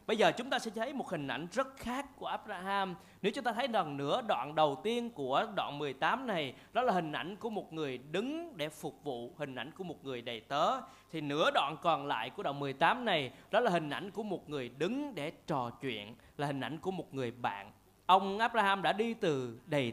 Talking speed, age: 230 wpm, 20-39